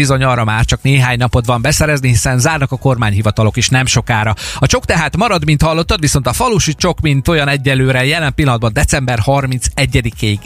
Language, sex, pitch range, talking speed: Hungarian, male, 115-155 Hz, 185 wpm